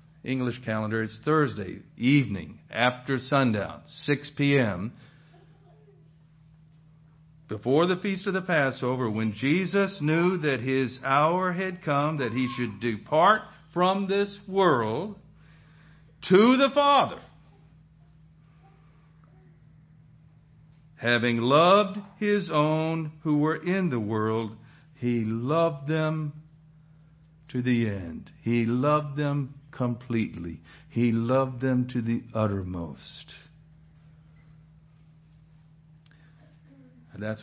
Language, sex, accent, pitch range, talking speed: English, male, American, 115-155 Hz, 95 wpm